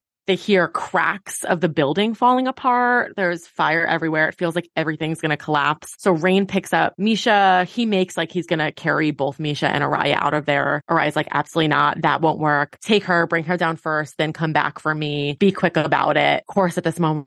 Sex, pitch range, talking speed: female, 155-205 Hz, 220 wpm